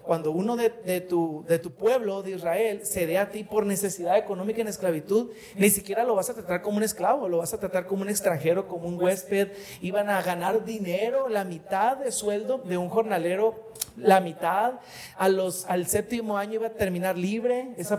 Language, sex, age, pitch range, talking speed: Spanish, male, 40-59, 185-225 Hz, 205 wpm